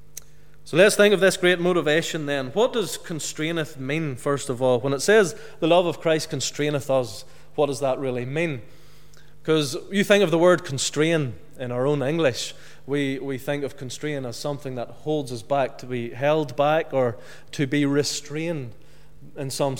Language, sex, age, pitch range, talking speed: English, male, 30-49, 125-155 Hz, 185 wpm